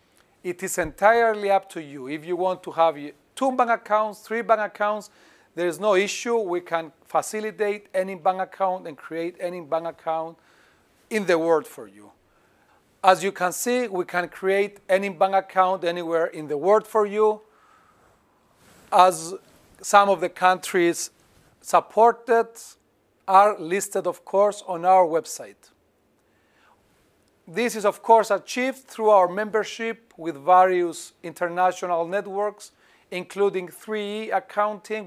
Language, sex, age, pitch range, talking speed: Greek, male, 40-59, 170-210 Hz, 140 wpm